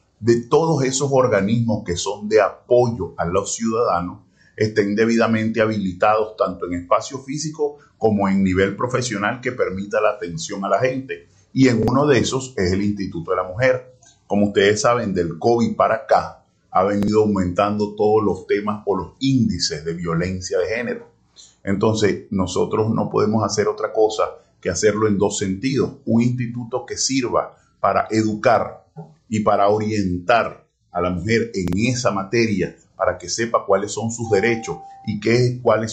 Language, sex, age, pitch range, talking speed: Spanish, male, 30-49, 100-125 Hz, 160 wpm